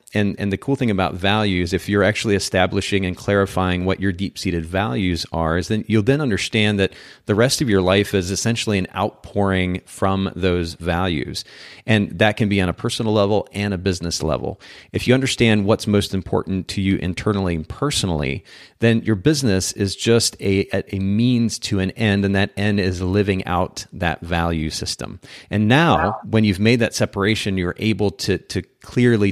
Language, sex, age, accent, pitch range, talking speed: English, male, 40-59, American, 90-105 Hz, 185 wpm